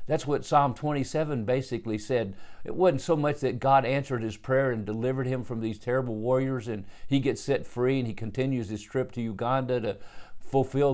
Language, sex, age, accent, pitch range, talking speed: English, male, 50-69, American, 115-140 Hz, 195 wpm